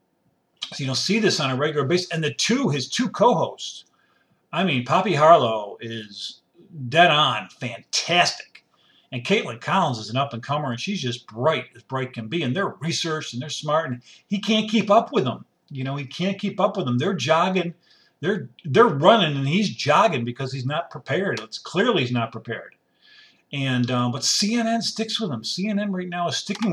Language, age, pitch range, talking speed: English, 50-69, 130-195 Hz, 200 wpm